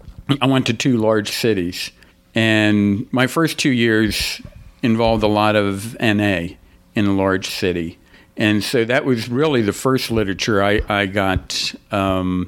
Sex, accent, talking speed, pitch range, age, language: male, American, 155 wpm, 95-130 Hz, 50-69, English